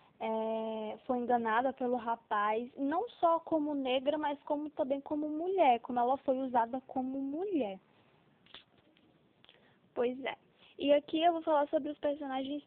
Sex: female